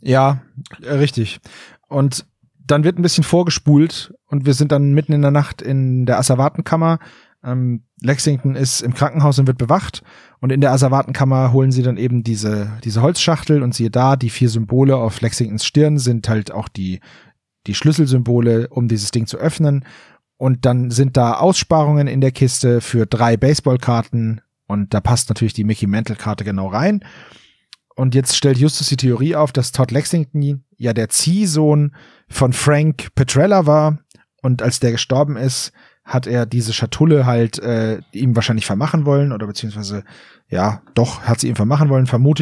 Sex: male